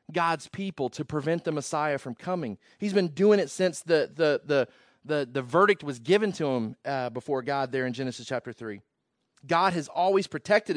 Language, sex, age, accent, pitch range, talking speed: English, male, 30-49, American, 120-150 Hz, 195 wpm